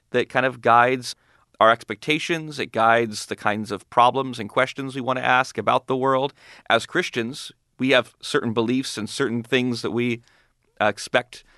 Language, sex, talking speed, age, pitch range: English, male, 170 wpm, 30-49, 110-130 Hz